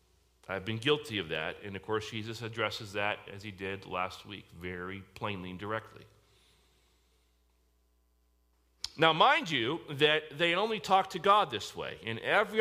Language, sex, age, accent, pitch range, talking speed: English, male, 40-59, American, 95-155 Hz, 155 wpm